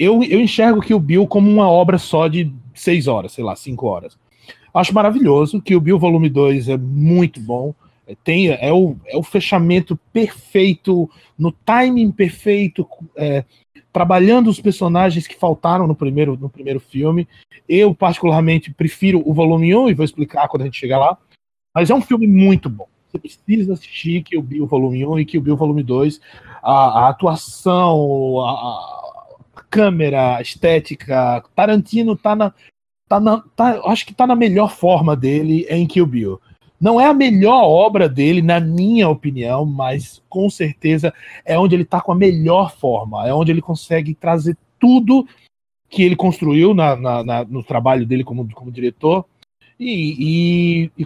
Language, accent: Portuguese, Brazilian